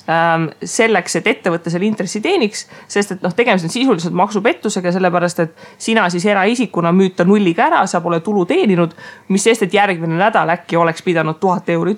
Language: English